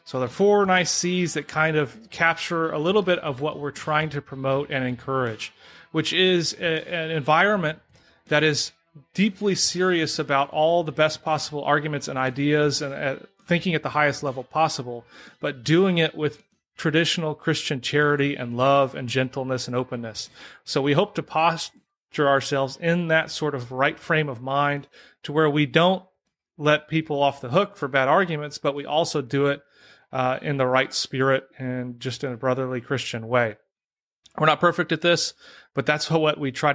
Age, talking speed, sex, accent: 30-49, 185 wpm, male, American